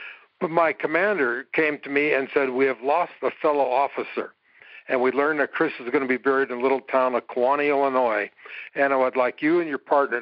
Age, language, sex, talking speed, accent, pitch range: 60-79, English, male, 230 wpm, American, 125-140 Hz